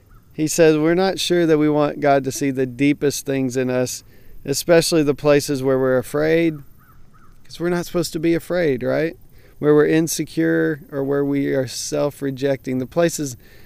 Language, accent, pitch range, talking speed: English, American, 130-150 Hz, 175 wpm